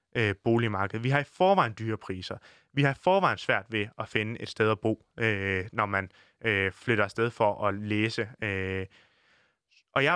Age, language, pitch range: 20-39, Danish, 110-155 Hz